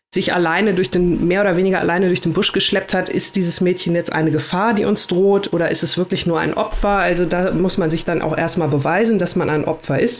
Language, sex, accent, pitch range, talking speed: German, female, German, 170-200 Hz, 255 wpm